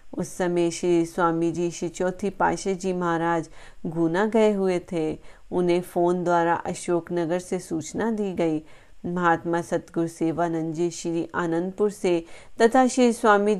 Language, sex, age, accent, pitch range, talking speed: Hindi, female, 30-49, native, 175-215 Hz, 140 wpm